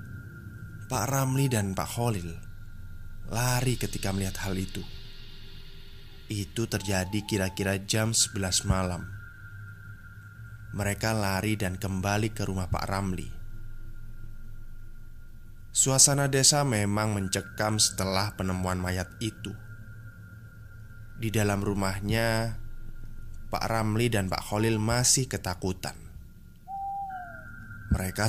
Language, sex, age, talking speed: Indonesian, male, 20-39, 90 wpm